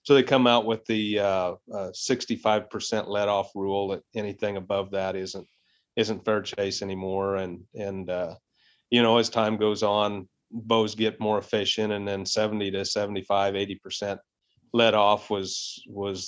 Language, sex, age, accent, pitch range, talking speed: English, male, 40-59, American, 95-110 Hz, 160 wpm